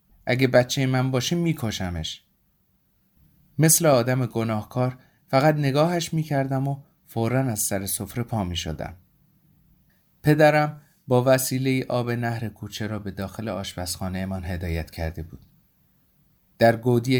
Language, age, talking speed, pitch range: Persian, 30-49, 120 wpm, 100-125 Hz